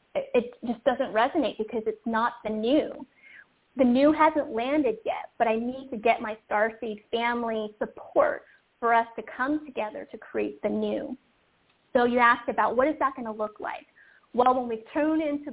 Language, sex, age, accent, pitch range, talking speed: English, female, 30-49, American, 225-285 Hz, 185 wpm